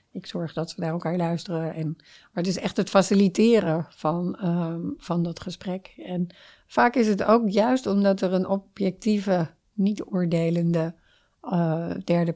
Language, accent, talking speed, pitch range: Dutch, Dutch, 140 wpm, 165-185 Hz